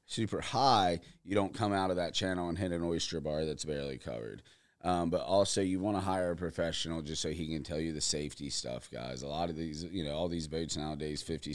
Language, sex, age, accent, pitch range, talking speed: English, male, 30-49, American, 75-90 Hz, 245 wpm